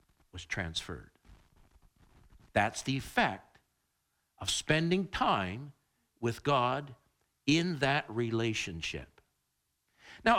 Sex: male